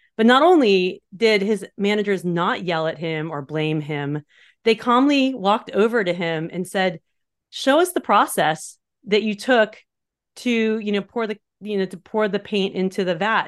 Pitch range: 170-210 Hz